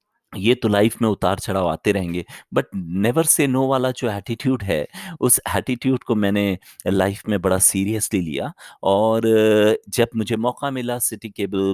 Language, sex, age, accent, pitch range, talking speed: Hindi, male, 30-49, native, 90-115 Hz, 165 wpm